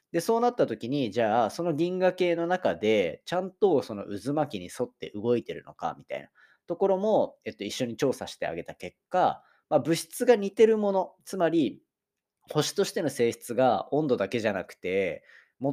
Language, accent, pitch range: Japanese, native, 120-200 Hz